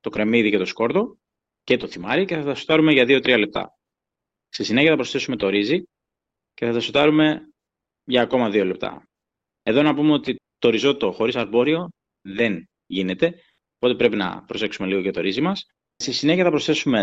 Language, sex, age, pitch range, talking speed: Greek, male, 20-39, 115-155 Hz, 185 wpm